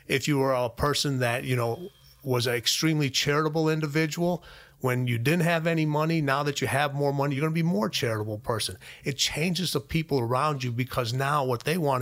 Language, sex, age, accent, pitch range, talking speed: English, male, 30-49, American, 125-150 Hz, 215 wpm